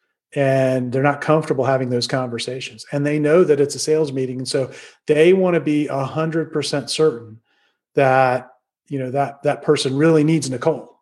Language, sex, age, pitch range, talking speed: English, male, 40-59, 135-155 Hz, 175 wpm